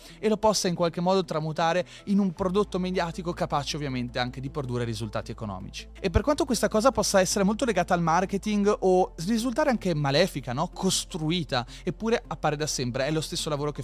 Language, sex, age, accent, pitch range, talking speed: Italian, male, 30-49, native, 145-205 Hz, 190 wpm